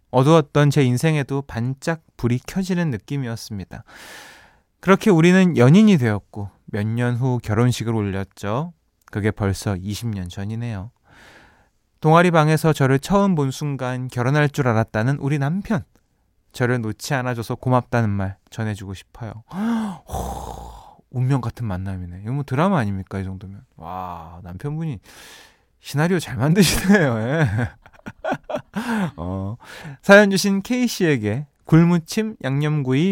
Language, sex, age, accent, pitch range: Korean, male, 20-39, native, 105-165 Hz